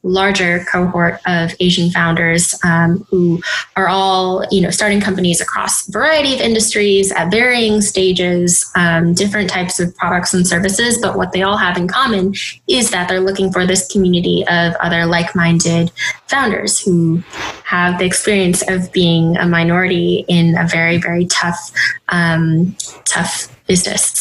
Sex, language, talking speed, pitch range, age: female, English, 155 wpm, 175-195 Hz, 20-39